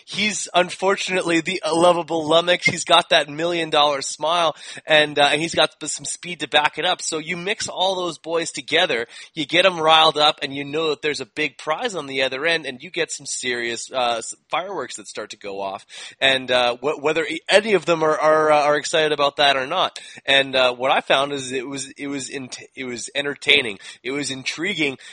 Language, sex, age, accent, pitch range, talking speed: English, male, 20-39, American, 135-170 Hz, 215 wpm